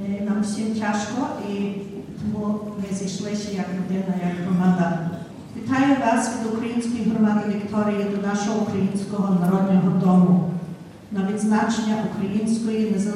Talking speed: 115 wpm